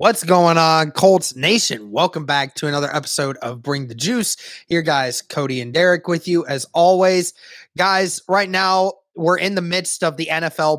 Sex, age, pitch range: male, 20-39, 150-180 Hz